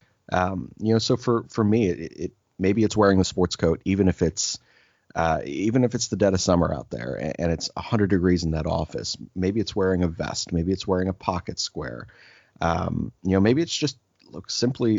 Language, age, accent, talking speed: English, 30-49, American, 220 wpm